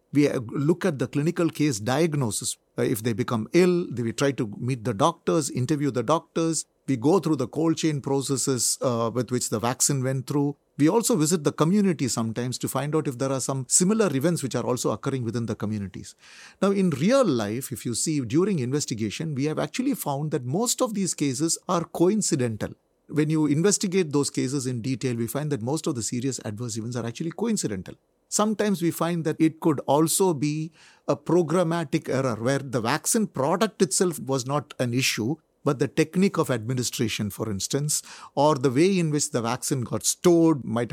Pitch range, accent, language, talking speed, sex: 125-165 Hz, Indian, English, 190 wpm, male